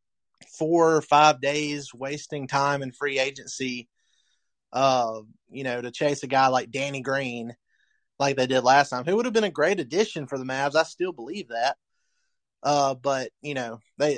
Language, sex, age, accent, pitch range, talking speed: English, male, 20-39, American, 125-155 Hz, 180 wpm